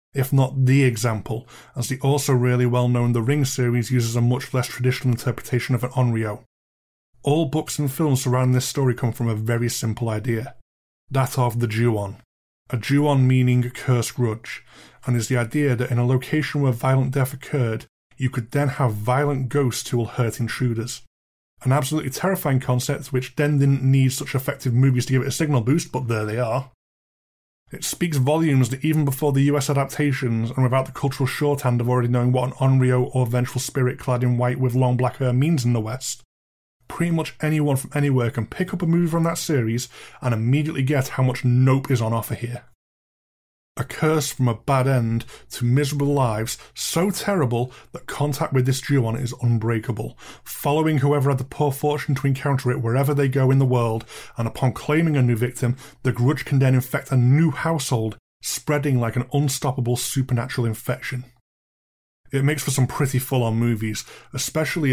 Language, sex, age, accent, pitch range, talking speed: English, male, 20-39, British, 120-140 Hz, 190 wpm